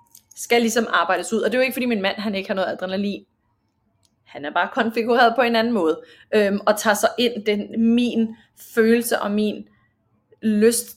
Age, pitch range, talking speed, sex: 20-39, 190-230 Hz, 195 wpm, female